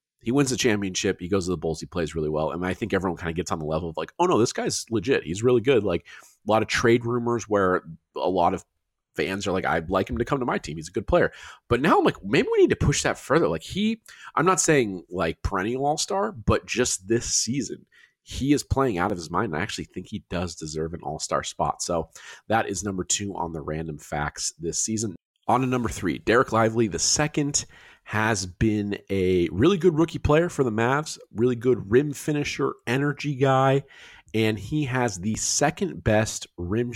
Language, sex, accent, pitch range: English, male, American, 90-125 Hz